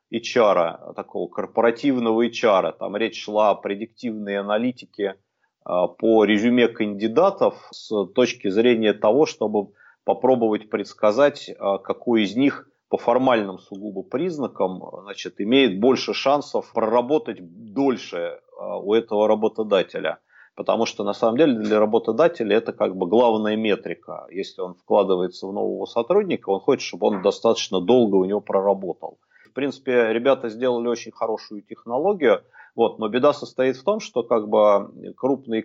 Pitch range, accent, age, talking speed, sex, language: 105-125 Hz, native, 30-49, 130 wpm, male, Russian